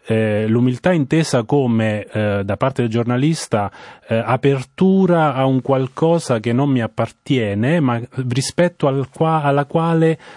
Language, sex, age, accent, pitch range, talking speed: Italian, male, 30-49, native, 110-135 Hz, 140 wpm